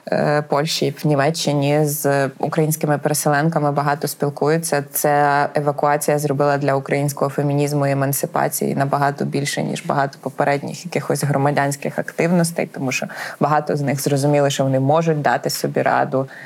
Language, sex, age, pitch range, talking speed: Ukrainian, female, 20-39, 145-175 Hz, 130 wpm